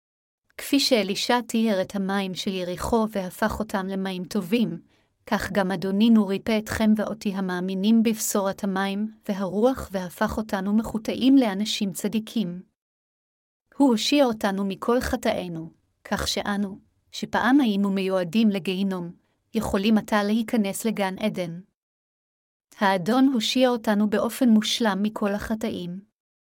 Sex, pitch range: female, 195-225 Hz